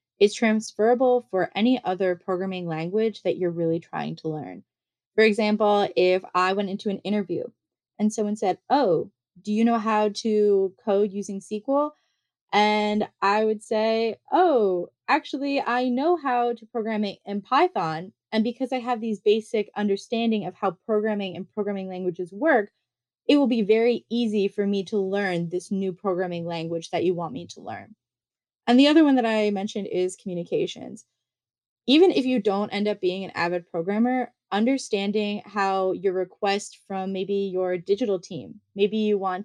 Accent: American